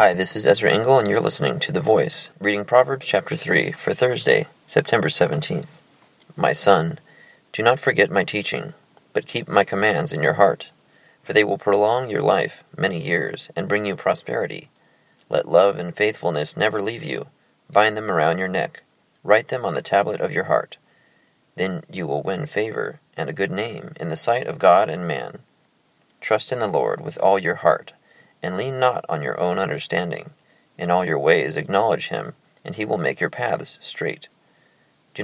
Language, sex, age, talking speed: English, male, 30-49, 185 wpm